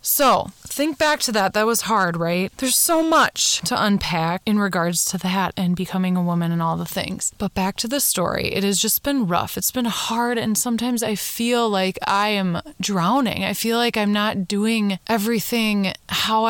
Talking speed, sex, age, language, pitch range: 200 wpm, female, 20-39, English, 185-225 Hz